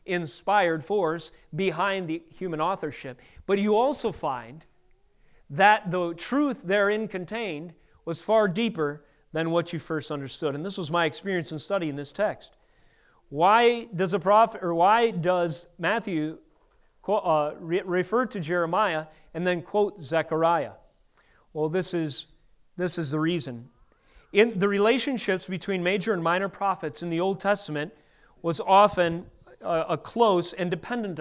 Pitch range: 160-205 Hz